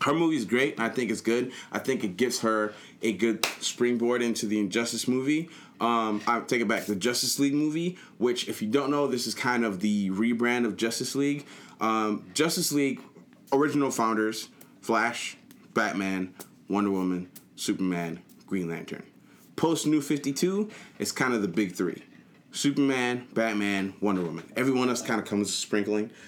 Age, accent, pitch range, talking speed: 20-39, American, 95-135 Hz, 170 wpm